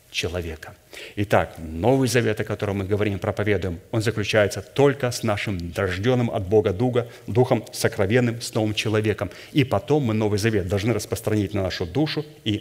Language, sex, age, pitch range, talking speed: Russian, male, 30-49, 105-120 Hz, 155 wpm